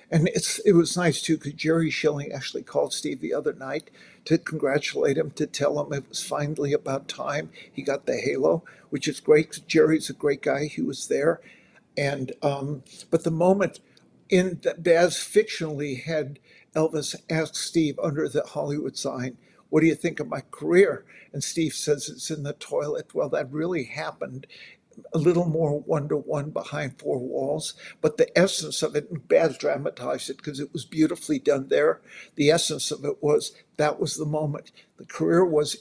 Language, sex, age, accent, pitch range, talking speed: English, male, 50-69, American, 145-175 Hz, 185 wpm